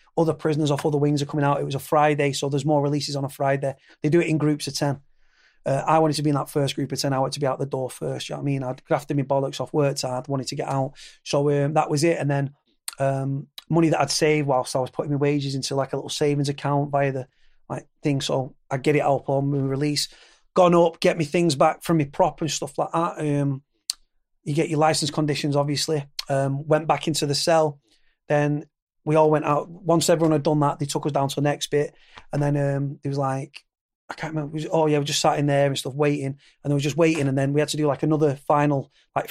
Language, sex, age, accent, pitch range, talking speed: English, male, 30-49, British, 140-155 Hz, 270 wpm